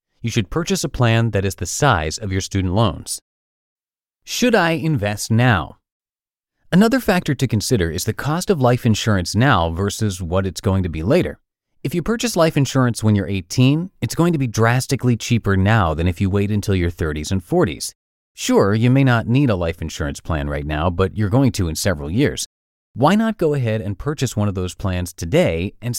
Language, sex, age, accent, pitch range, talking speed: English, male, 30-49, American, 90-130 Hz, 205 wpm